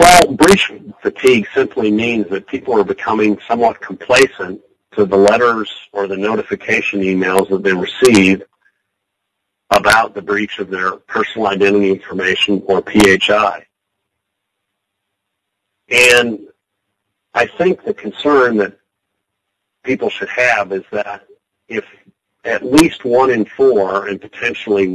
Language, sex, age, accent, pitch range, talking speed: English, male, 50-69, American, 100-105 Hz, 120 wpm